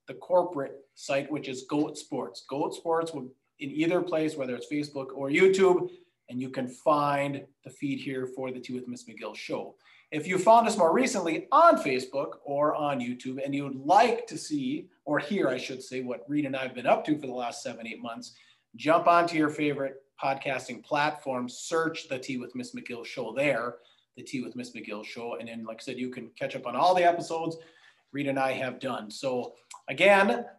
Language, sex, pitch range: English, male, 135-180 Hz